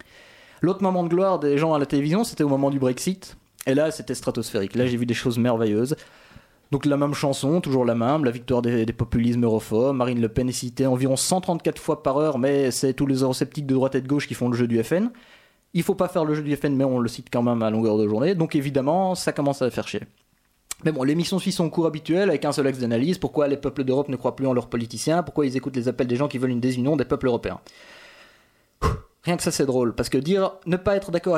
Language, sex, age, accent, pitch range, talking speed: French, male, 20-39, French, 130-165 Hz, 260 wpm